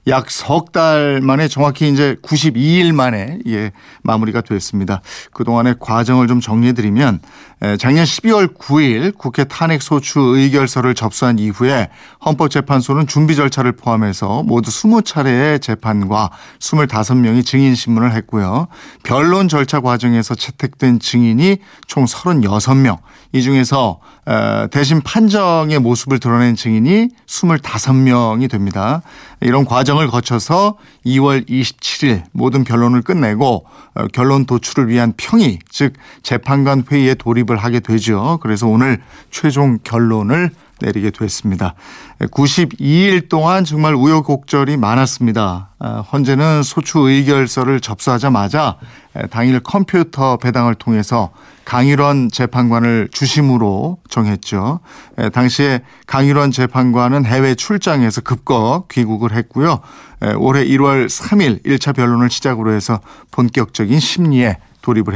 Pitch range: 115-145 Hz